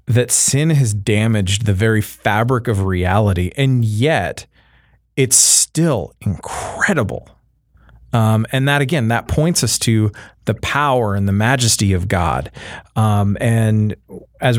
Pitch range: 100-120 Hz